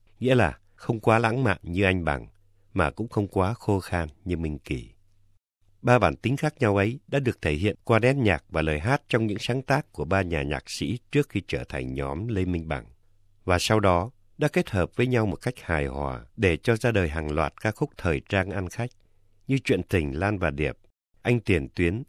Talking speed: 230 wpm